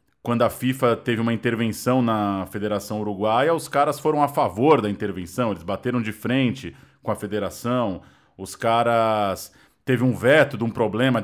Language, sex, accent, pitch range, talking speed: Portuguese, male, Brazilian, 110-135 Hz, 165 wpm